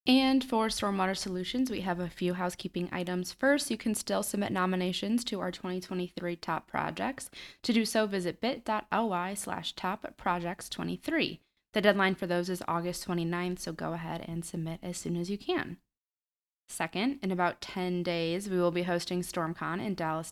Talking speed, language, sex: 170 wpm, English, female